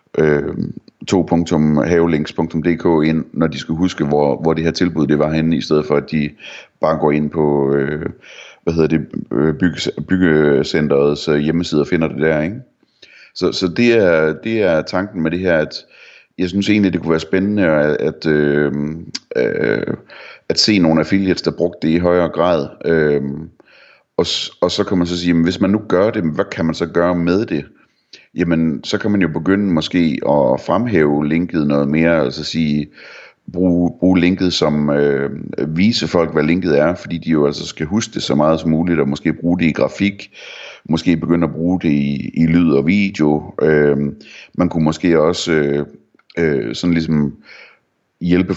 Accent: native